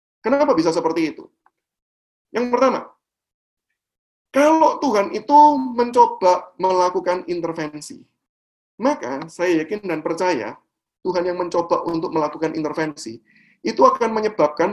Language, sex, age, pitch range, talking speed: Indonesian, male, 30-49, 165-255 Hz, 105 wpm